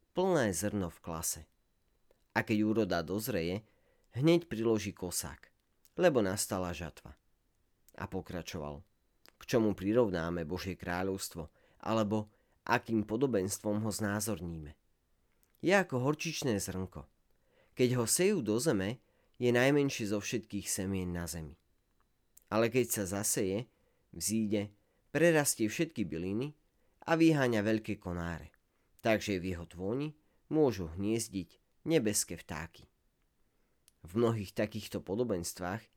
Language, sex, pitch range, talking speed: Slovak, male, 90-120 Hz, 110 wpm